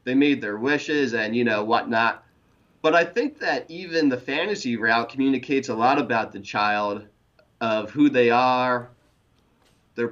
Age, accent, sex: 30-49, American, male